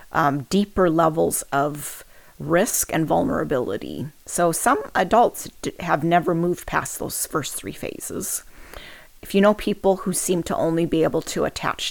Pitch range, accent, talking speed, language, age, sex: 165-195 Hz, American, 150 wpm, English, 40-59, female